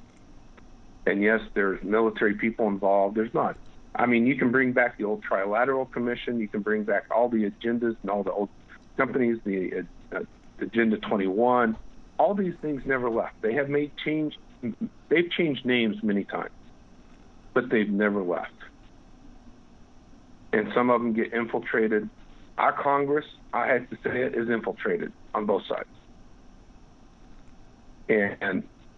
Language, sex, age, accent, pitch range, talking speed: English, male, 50-69, American, 110-135 Hz, 145 wpm